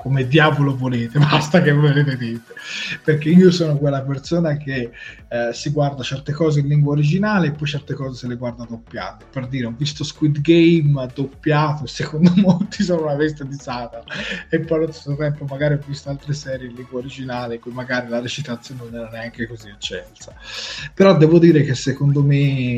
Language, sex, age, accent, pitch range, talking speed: Italian, male, 20-39, native, 120-150 Hz, 190 wpm